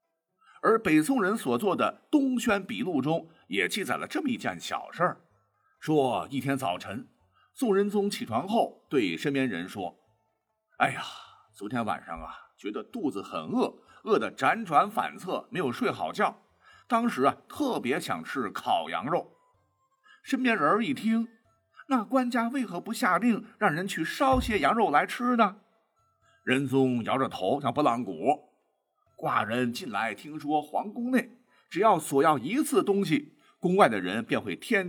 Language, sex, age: Chinese, male, 50-69